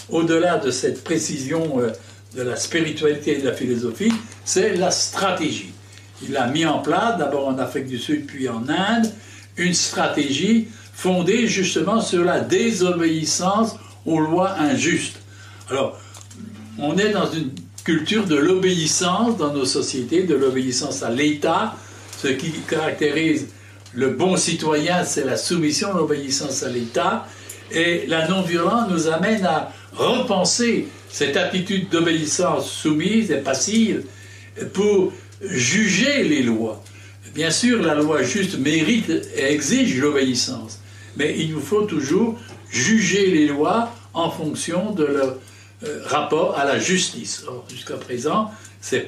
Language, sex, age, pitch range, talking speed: French, male, 60-79, 125-195 Hz, 135 wpm